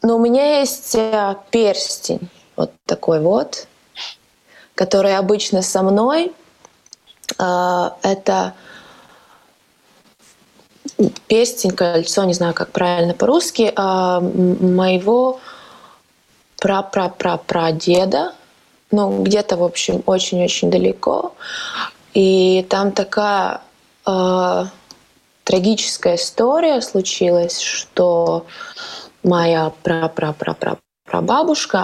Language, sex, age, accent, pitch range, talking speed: Russian, female, 20-39, native, 175-210 Hz, 70 wpm